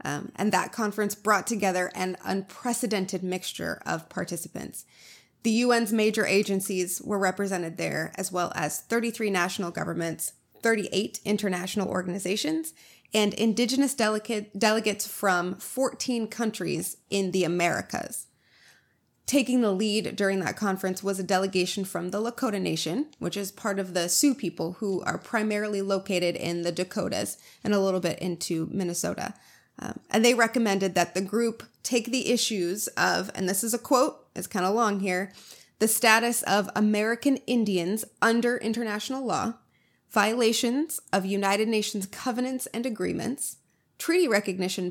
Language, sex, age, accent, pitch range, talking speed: English, female, 20-39, American, 185-235 Hz, 145 wpm